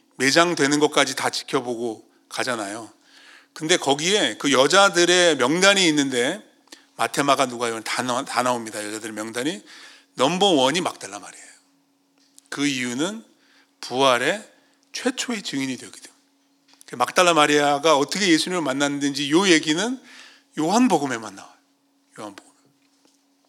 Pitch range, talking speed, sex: 135-200 Hz, 95 wpm, male